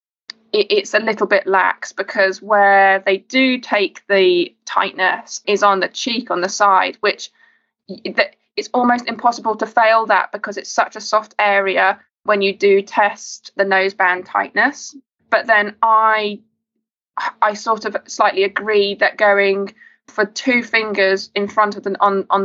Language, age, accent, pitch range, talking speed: English, 20-39, British, 190-220 Hz, 155 wpm